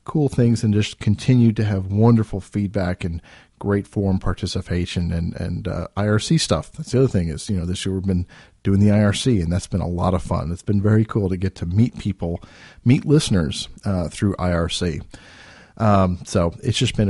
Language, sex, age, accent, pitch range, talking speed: English, male, 40-59, American, 90-115 Hz, 205 wpm